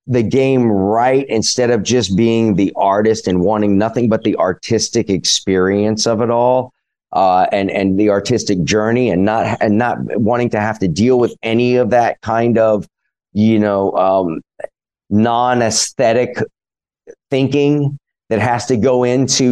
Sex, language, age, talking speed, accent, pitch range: male, English, 30-49, 155 wpm, American, 95-125 Hz